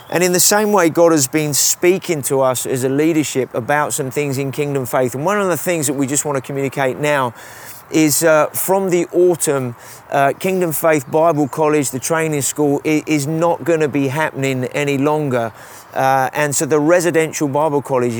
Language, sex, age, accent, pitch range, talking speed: English, male, 30-49, British, 140-165 Hz, 190 wpm